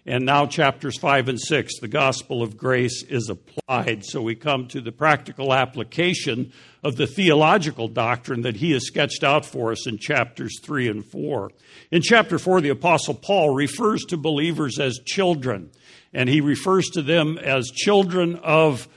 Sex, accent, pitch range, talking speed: male, American, 125-155 Hz, 170 wpm